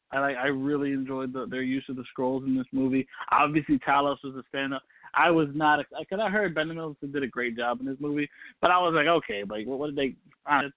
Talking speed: 250 wpm